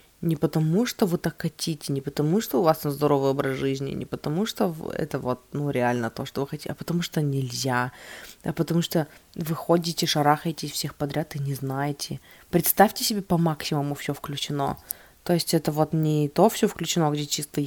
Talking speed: 190 wpm